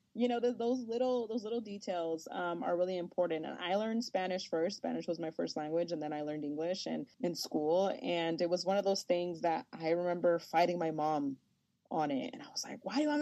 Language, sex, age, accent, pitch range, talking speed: English, female, 20-39, American, 170-245 Hz, 240 wpm